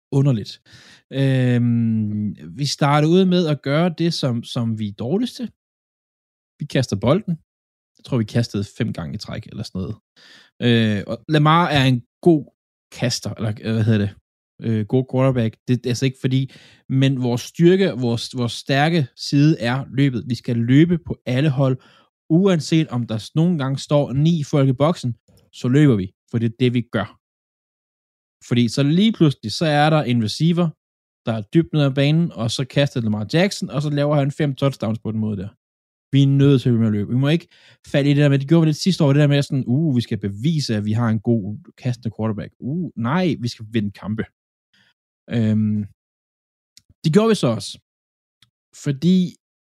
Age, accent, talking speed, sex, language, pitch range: 20-39, native, 195 wpm, male, Danish, 110-150 Hz